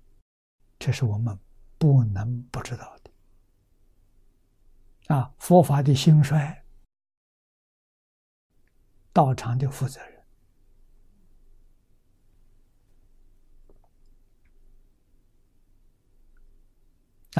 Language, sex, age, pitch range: Chinese, male, 60-79, 95-125 Hz